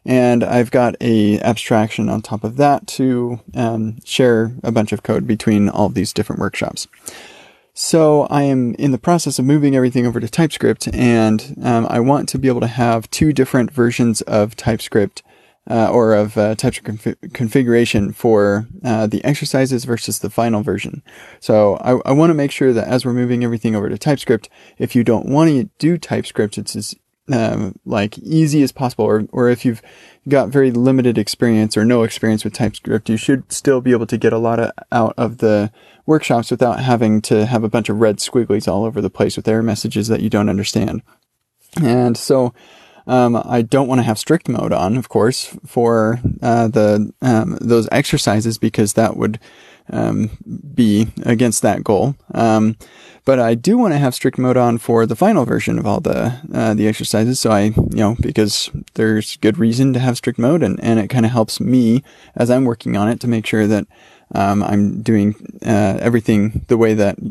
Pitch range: 110-125 Hz